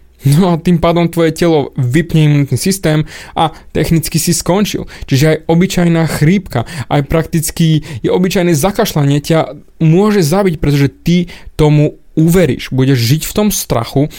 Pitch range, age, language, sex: 135-175 Hz, 20-39, Slovak, male